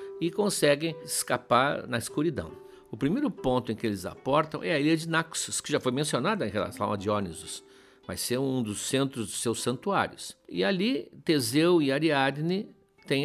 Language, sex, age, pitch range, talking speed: Portuguese, male, 60-79, 115-160 Hz, 175 wpm